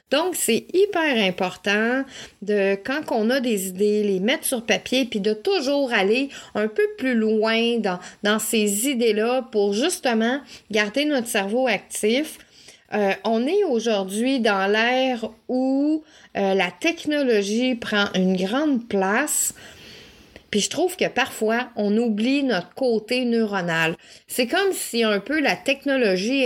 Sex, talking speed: female, 145 wpm